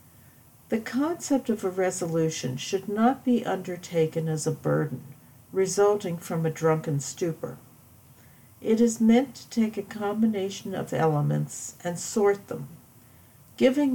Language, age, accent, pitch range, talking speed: English, 60-79, American, 155-215 Hz, 130 wpm